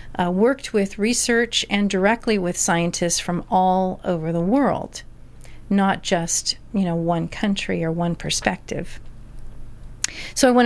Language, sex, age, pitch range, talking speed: English, female, 40-59, 175-220 Hz, 140 wpm